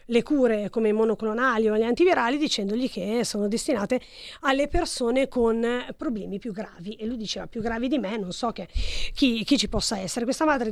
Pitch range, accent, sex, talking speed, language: 215-275 Hz, native, female, 190 wpm, Italian